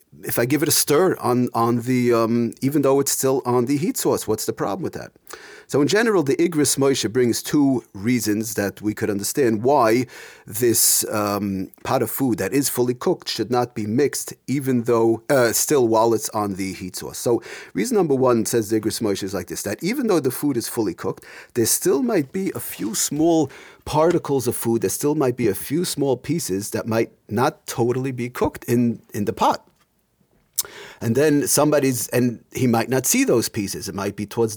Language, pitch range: English, 110-135 Hz